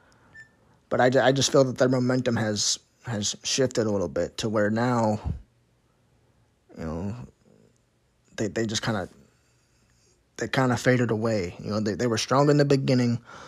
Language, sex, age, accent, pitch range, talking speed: English, male, 20-39, American, 110-125 Hz, 165 wpm